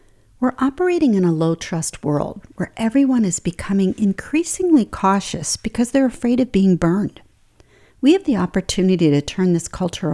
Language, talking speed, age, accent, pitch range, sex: English, 155 wpm, 50-69, American, 170-245 Hz, female